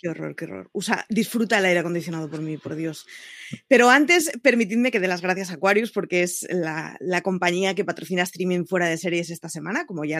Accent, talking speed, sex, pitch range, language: Spanish, 225 wpm, female, 175-240 Hz, Spanish